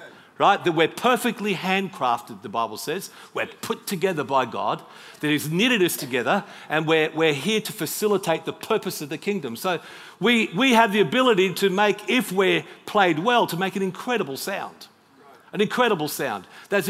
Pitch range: 160-220 Hz